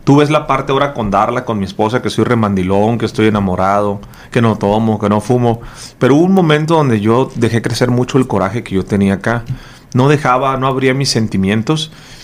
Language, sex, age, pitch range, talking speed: English, male, 40-59, 115-150 Hz, 210 wpm